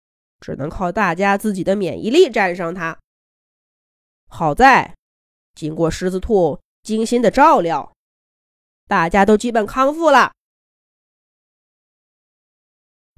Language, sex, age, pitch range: Chinese, female, 20-39, 165-250 Hz